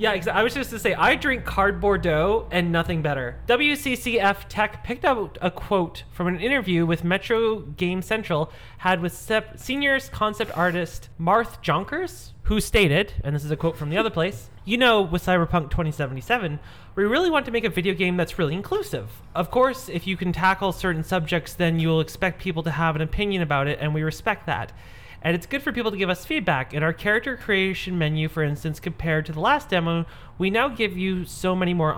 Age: 30-49